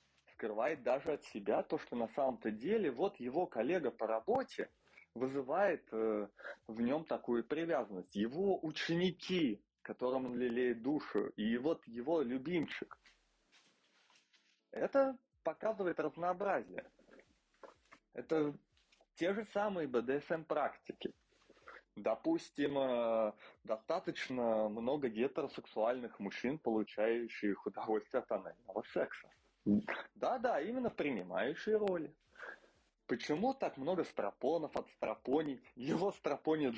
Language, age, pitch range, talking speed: Russian, 20-39, 120-185 Hz, 100 wpm